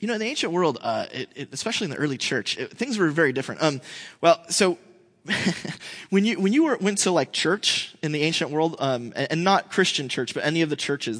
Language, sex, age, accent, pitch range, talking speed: English, male, 20-39, American, 155-195 Hz, 245 wpm